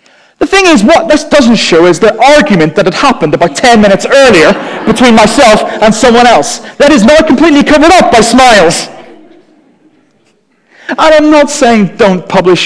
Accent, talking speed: British, 170 wpm